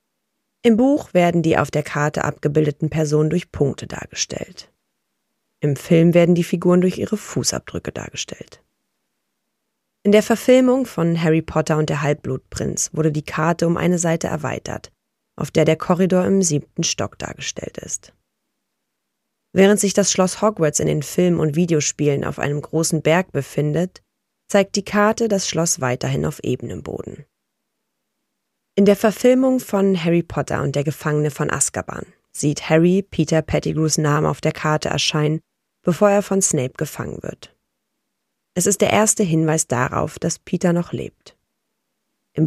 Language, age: German, 30-49